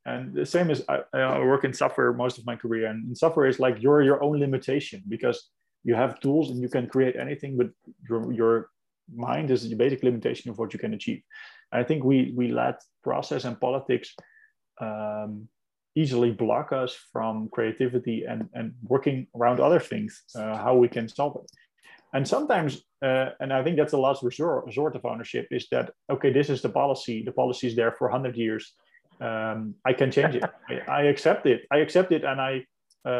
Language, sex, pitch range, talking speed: English, male, 115-135 Hz, 200 wpm